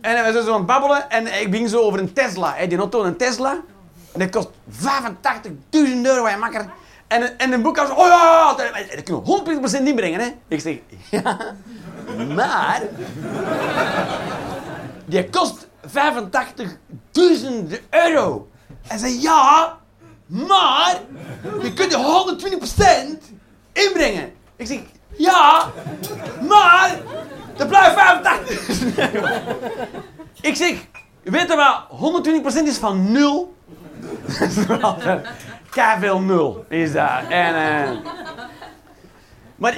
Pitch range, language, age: 200-290 Hz, Dutch, 30-49